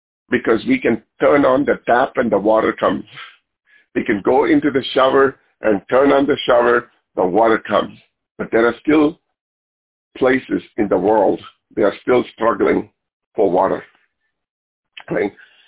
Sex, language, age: male, English, 50-69